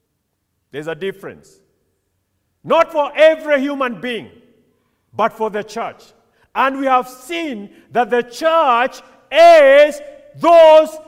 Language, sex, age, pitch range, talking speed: English, male, 50-69, 205-310 Hz, 115 wpm